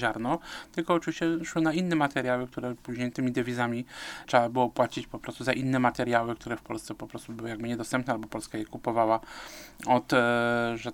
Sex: male